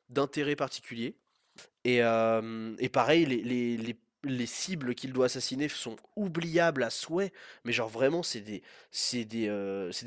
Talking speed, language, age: 160 wpm, French, 20-39